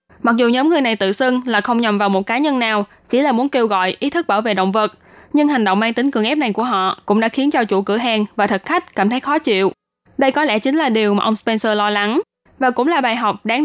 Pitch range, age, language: 210-255 Hz, 10-29, Vietnamese